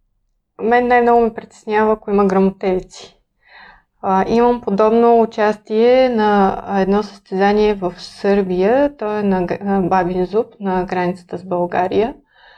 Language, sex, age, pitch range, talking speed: Bulgarian, female, 20-39, 190-230 Hz, 125 wpm